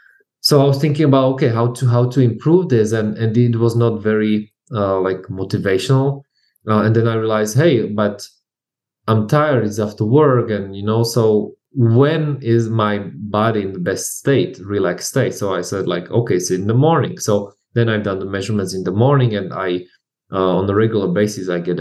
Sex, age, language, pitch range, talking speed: male, 20-39, English, 105-130 Hz, 205 wpm